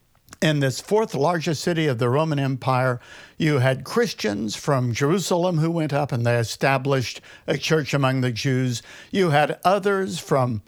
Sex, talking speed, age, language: male, 165 wpm, 60-79, English